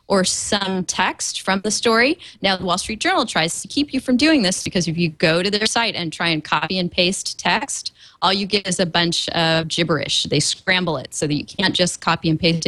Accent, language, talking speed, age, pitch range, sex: American, English, 240 wpm, 20-39, 165-215 Hz, female